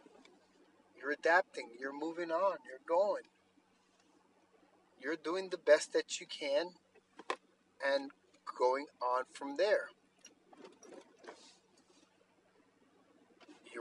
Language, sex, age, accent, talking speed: English, male, 40-59, American, 85 wpm